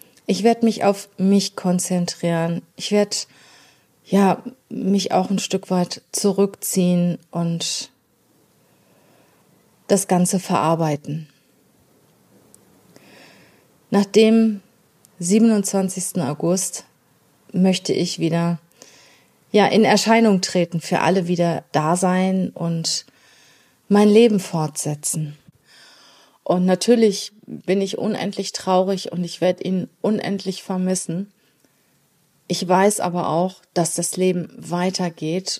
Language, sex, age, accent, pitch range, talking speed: German, female, 30-49, German, 175-200 Hz, 100 wpm